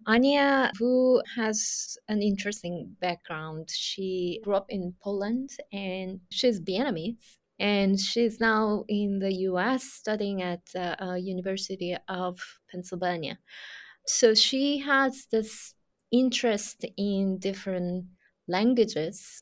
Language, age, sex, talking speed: English, 20-39, female, 105 wpm